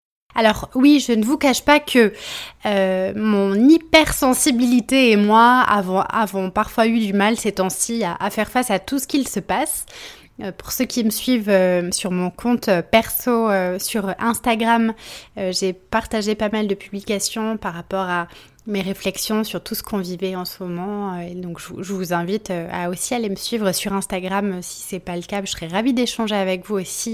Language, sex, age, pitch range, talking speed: French, female, 20-39, 205-260 Hz, 210 wpm